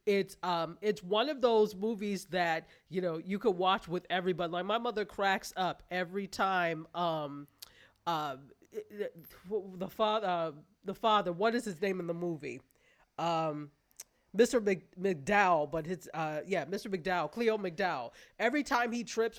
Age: 30-49